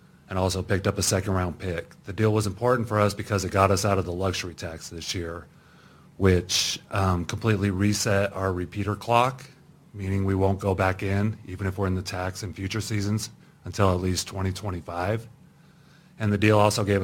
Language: English